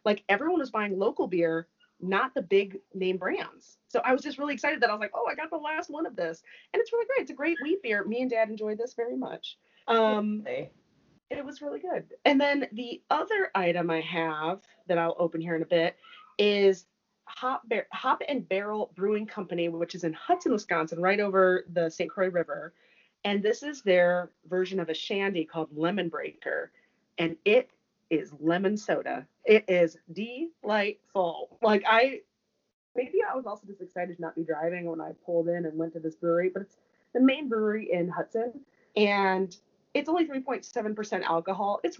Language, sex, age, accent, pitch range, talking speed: English, female, 30-49, American, 175-260 Hz, 195 wpm